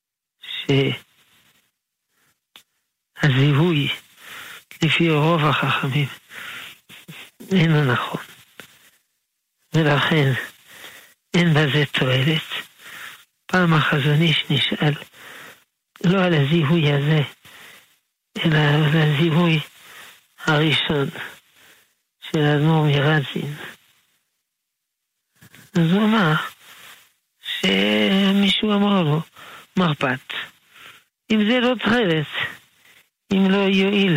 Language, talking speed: Hebrew, 65 wpm